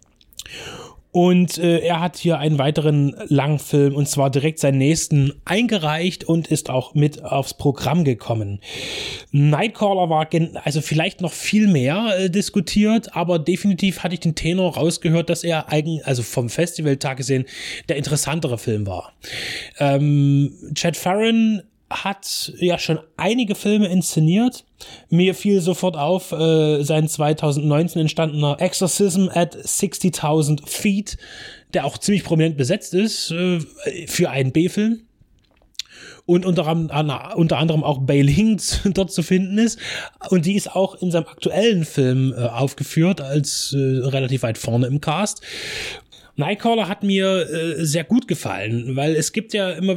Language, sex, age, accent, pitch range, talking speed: German, male, 20-39, German, 150-185 Hz, 145 wpm